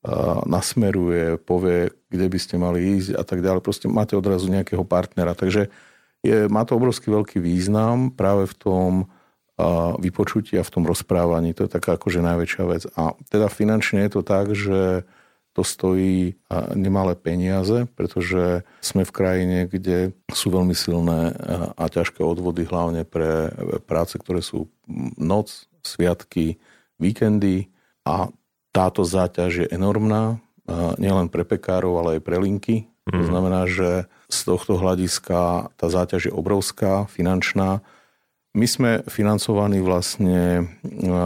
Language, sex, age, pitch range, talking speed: Slovak, male, 50-69, 85-100 Hz, 135 wpm